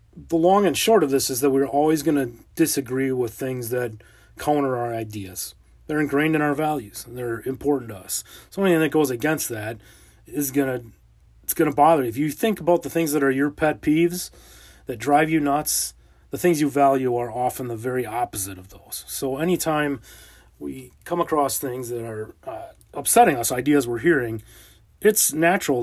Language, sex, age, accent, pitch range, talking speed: English, male, 30-49, American, 115-150 Hz, 190 wpm